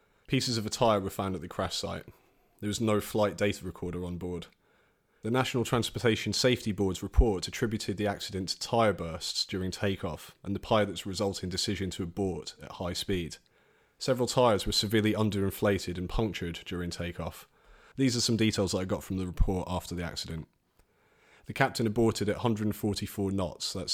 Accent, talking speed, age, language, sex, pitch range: British, 180 wpm, 30-49, English, male, 90-105 Hz